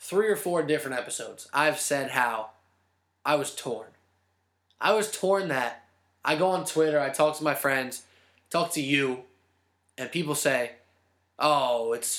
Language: English